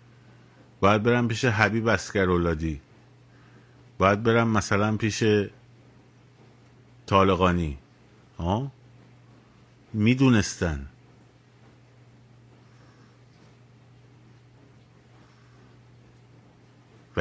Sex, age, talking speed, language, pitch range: male, 50-69, 40 wpm, Persian, 105-130 Hz